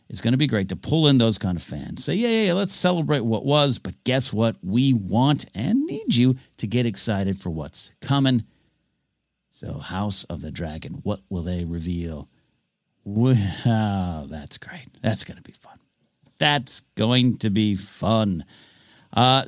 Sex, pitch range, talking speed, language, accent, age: male, 100-170 Hz, 180 wpm, English, American, 50-69